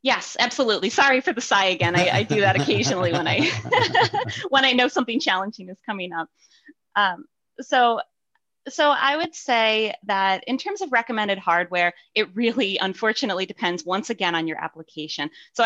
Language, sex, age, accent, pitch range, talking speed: English, female, 20-39, American, 175-230 Hz, 170 wpm